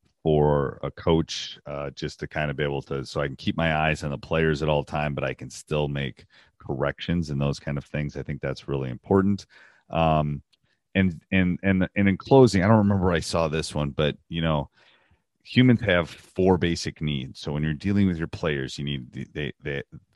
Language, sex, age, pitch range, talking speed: English, male, 30-49, 70-85 Hz, 215 wpm